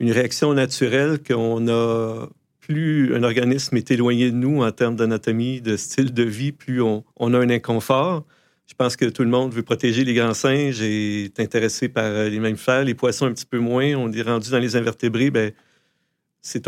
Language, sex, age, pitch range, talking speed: French, male, 50-69, 115-135 Hz, 205 wpm